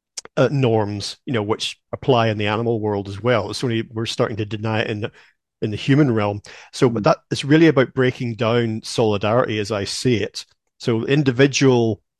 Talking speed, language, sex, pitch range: 200 wpm, English, male, 110-125 Hz